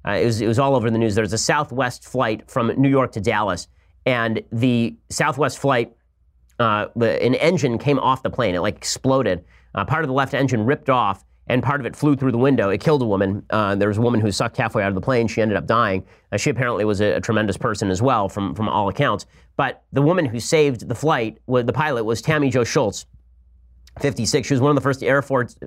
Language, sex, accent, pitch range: English, male, American, 115-145 Hz